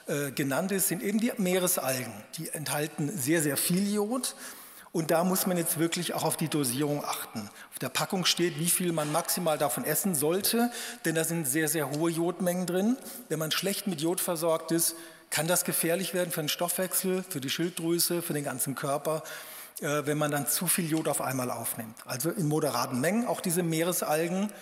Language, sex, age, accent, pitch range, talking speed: German, male, 40-59, German, 150-185 Hz, 195 wpm